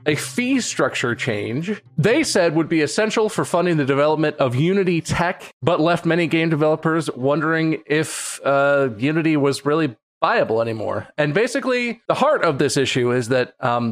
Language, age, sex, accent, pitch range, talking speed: English, 30-49, male, American, 130-175 Hz, 170 wpm